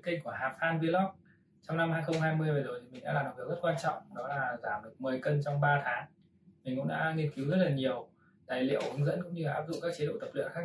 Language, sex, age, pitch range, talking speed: Vietnamese, male, 20-39, 135-165 Hz, 280 wpm